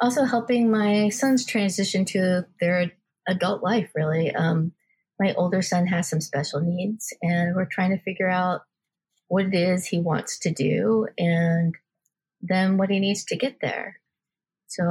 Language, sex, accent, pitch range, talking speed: English, female, American, 170-200 Hz, 160 wpm